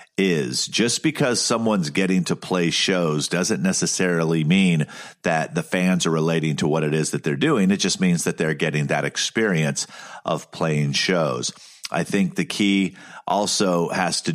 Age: 40-59